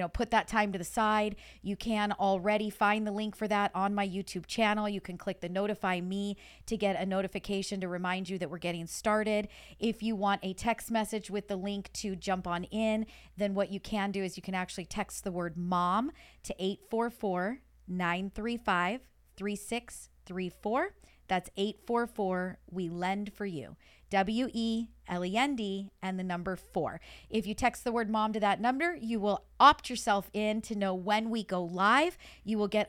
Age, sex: 40-59, female